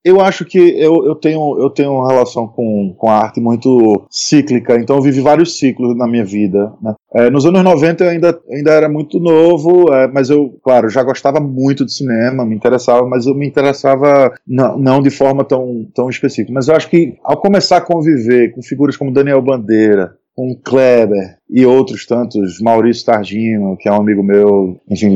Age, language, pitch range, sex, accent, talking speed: 20-39, Portuguese, 115-140 Hz, male, Brazilian, 190 wpm